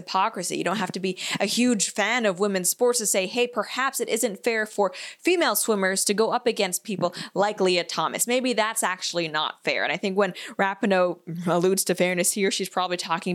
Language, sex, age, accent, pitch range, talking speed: English, female, 20-39, American, 185-240 Hz, 210 wpm